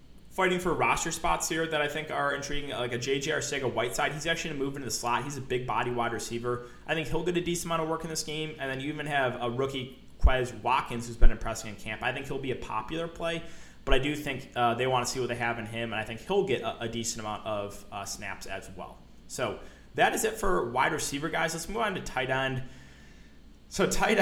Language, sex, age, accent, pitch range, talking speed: English, male, 20-39, American, 120-155 Hz, 260 wpm